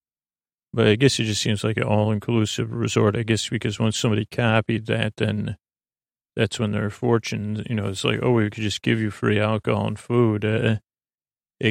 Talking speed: 200 wpm